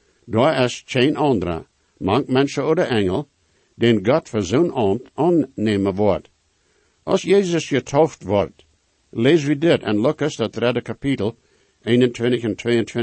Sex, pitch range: male, 115-145 Hz